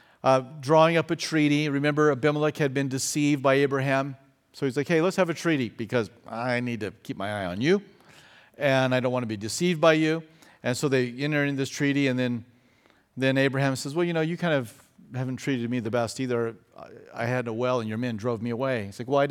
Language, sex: English, male